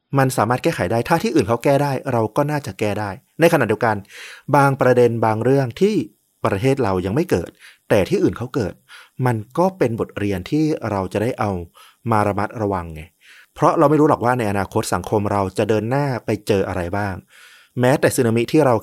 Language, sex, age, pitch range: Thai, male, 30-49, 105-135 Hz